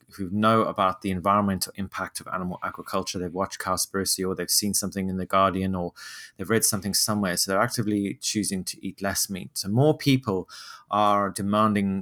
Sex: male